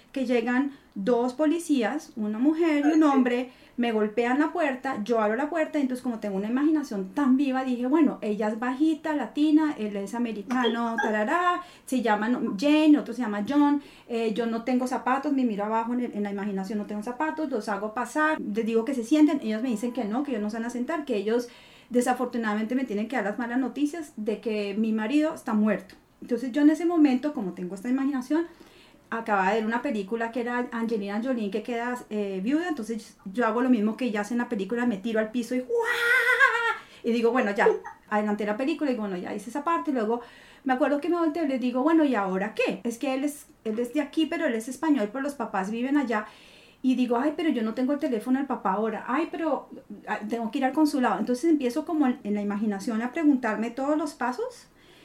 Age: 30-49